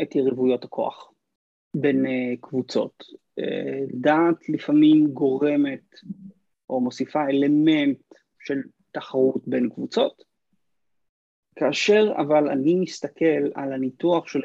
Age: 30-49